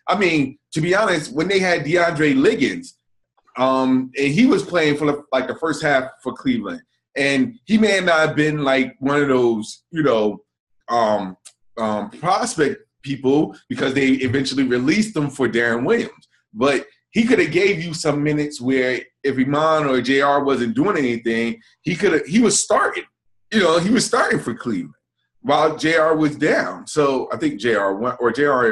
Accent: American